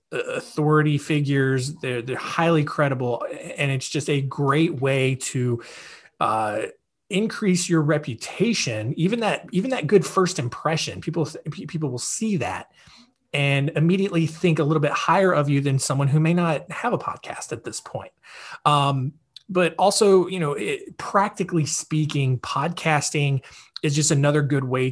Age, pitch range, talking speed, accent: 20-39, 125-160 Hz, 150 wpm, American